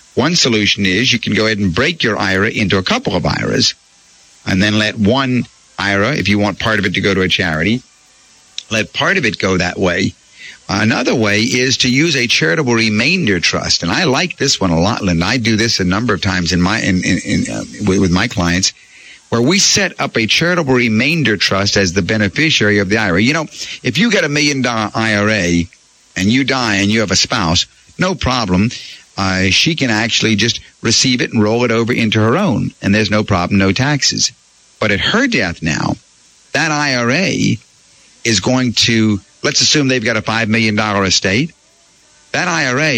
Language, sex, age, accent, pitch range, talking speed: English, male, 50-69, American, 100-125 Hz, 195 wpm